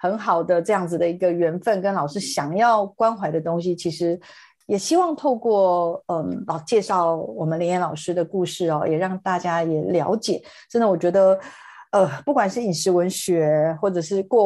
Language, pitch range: Chinese, 160-190 Hz